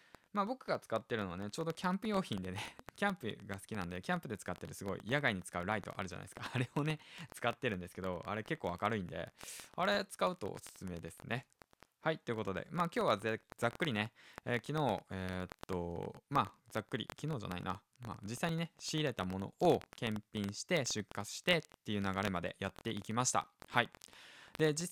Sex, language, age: male, Japanese, 20-39